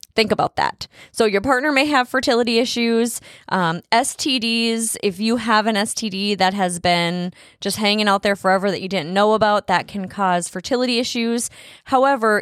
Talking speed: 175 wpm